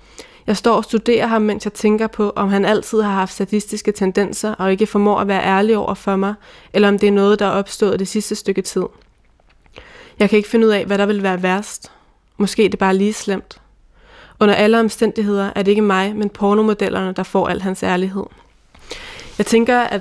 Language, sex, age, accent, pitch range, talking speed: Danish, female, 20-39, native, 200-220 Hz, 210 wpm